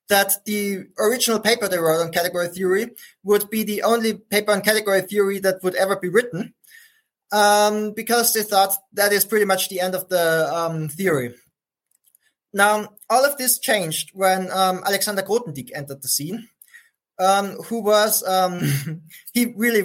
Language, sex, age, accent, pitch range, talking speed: English, male, 20-39, German, 180-210 Hz, 165 wpm